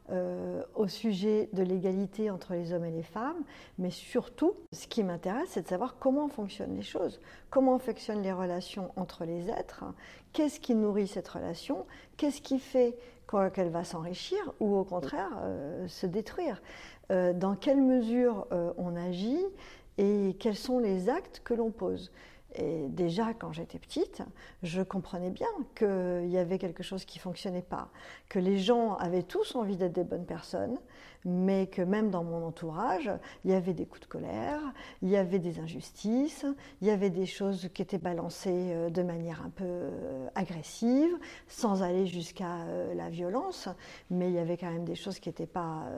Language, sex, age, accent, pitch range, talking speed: French, female, 50-69, French, 180-240 Hz, 180 wpm